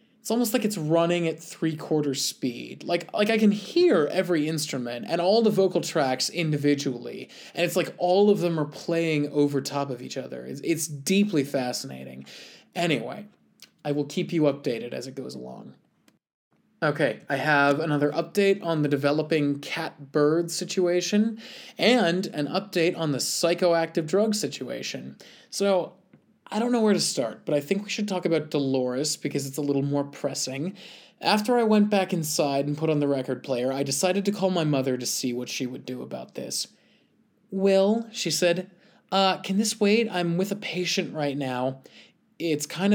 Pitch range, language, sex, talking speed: 140-190 Hz, English, male, 175 wpm